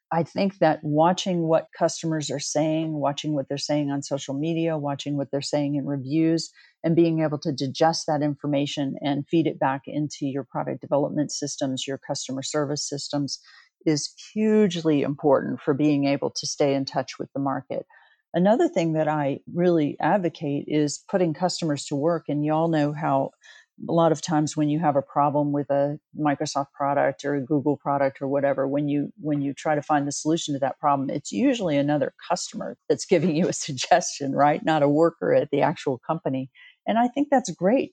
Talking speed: 195 wpm